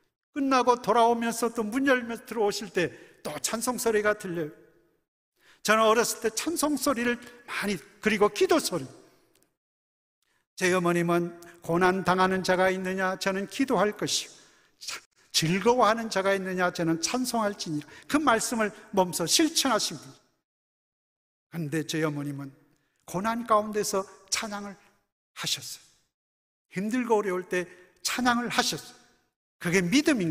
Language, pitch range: Korean, 170-230 Hz